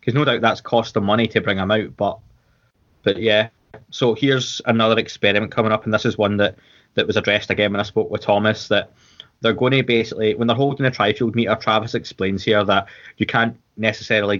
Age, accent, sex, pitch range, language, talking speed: 20-39, British, male, 105-115 Hz, English, 215 wpm